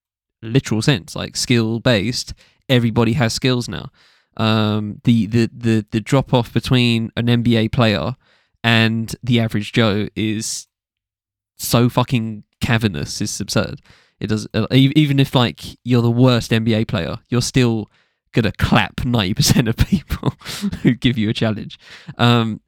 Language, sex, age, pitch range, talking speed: English, male, 20-39, 110-125 Hz, 145 wpm